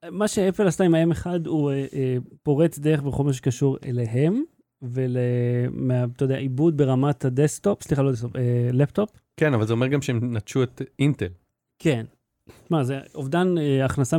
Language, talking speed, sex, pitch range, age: Hebrew, 145 wpm, male, 130-170 Hz, 30-49